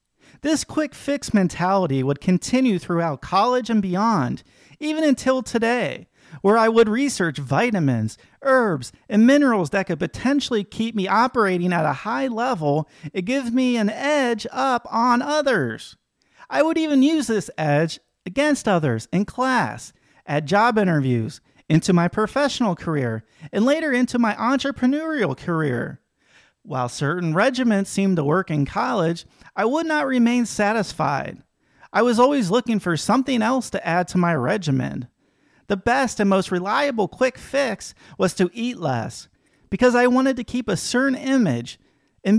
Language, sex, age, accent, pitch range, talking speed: English, male, 40-59, American, 175-255 Hz, 150 wpm